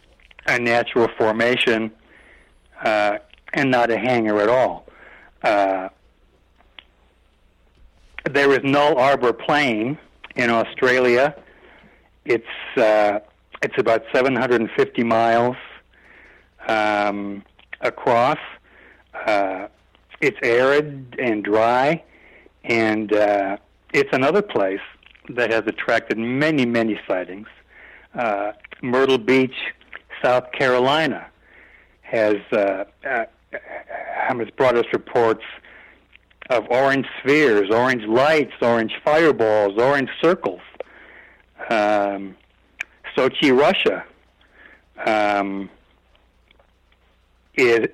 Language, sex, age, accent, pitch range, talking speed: English, male, 60-79, American, 100-125 Hz, 85 wpm